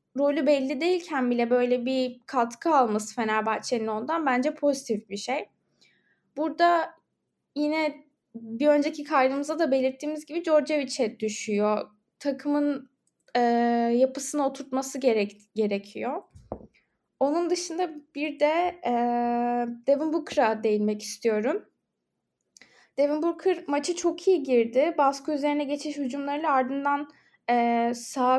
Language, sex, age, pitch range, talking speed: Turkish, female, 10-29, 240-300 Hz, 110 wpm